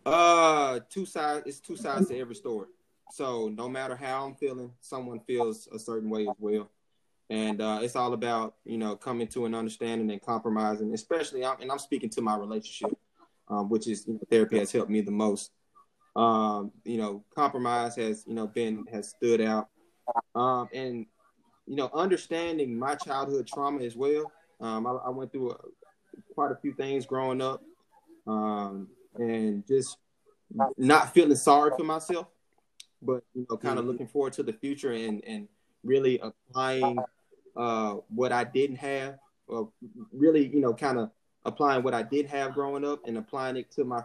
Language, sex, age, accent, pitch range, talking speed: English, male, 20-39, American, 110-140 Hz, 175 wpm